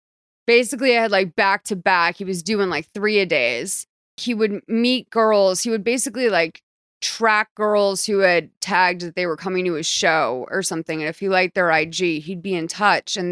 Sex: female